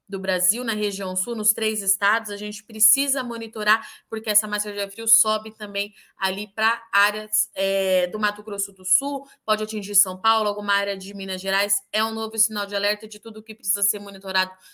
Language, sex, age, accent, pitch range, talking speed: Portuguese, female, 20-39, Brazilian, 200-225 Hz, 200 wpm